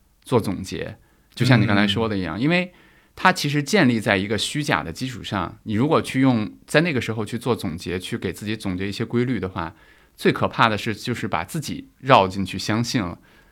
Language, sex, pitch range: Chinese, male, 95-120 Hz